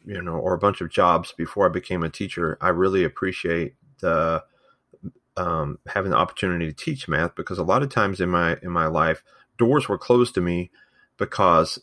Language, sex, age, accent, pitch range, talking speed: English, male, 30-49, American, 85-100 Hz, 200 wpm